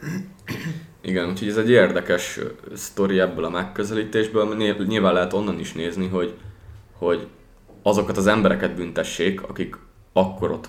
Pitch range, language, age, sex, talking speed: 90-105 Hz, Hungarian, 20-39, male, 135 wpm